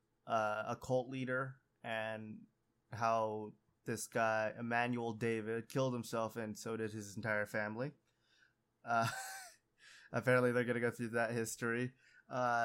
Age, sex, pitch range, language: 20-39, male, 110-135 Hz, English